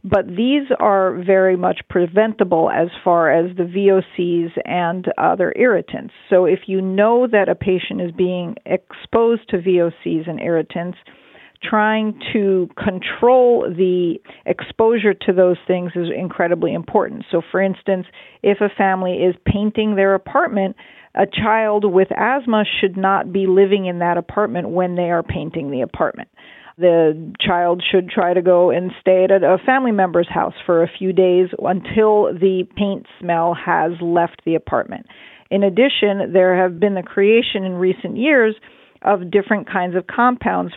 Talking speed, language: 155 wpm, English